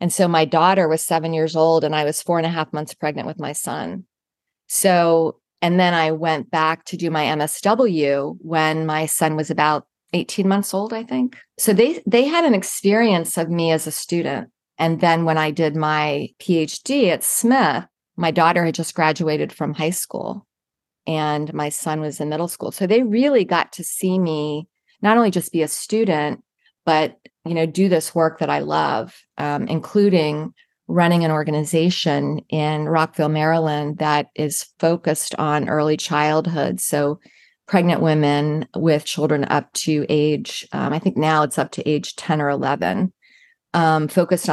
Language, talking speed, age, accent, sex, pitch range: English, 180 wpm, 40-59, American, female, 150-180 Hz